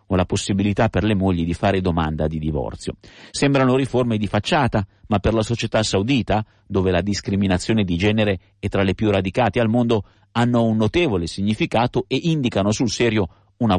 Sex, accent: male, native